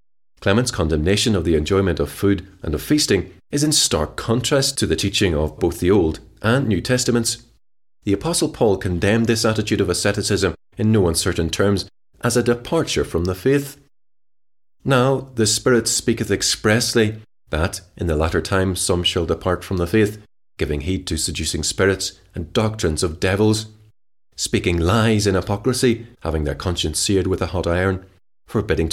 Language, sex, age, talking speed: English, male, 30-49, 165 wpm